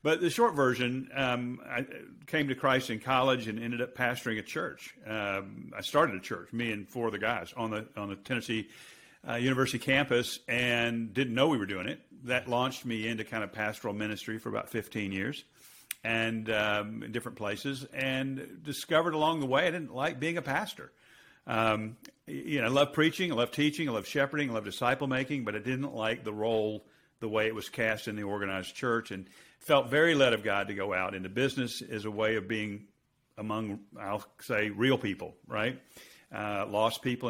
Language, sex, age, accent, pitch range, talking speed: English, male, 50-69, American, 105-130 Hz, 205 wpm